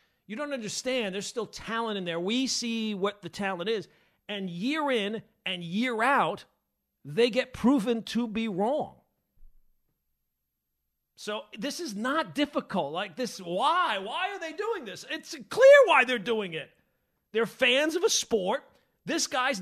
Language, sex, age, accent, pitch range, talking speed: English, male, 40-59, American, 200-270 Hz, 160 wpm